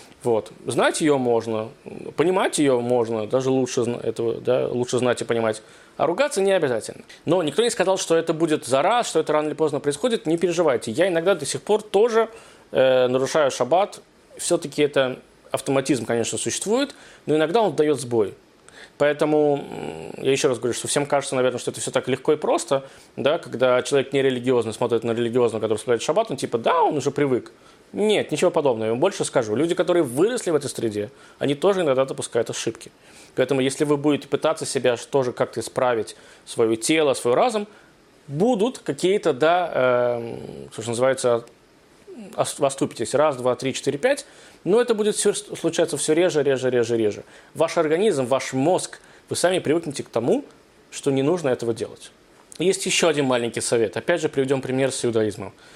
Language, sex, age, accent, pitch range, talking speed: Russian, male, 20-39, native, 125-175 Hz, 180 wpm